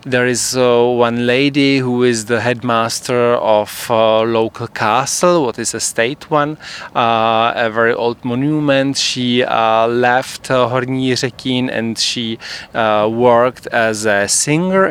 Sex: male